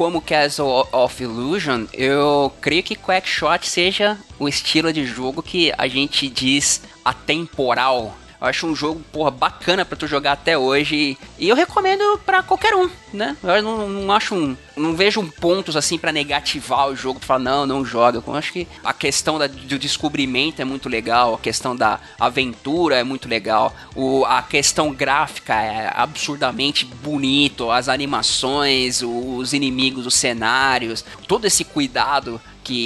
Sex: male